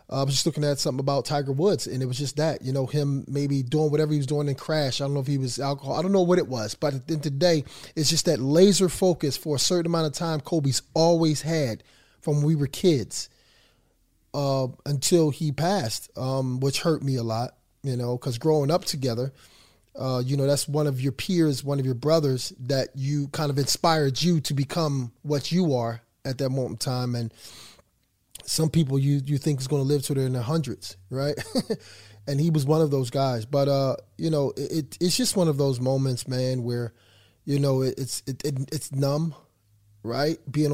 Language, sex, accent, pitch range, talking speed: English, male, American, 130-155 Hz, 225 wpm